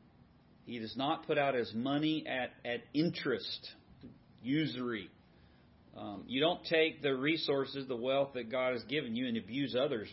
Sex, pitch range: male, 100-130 Hz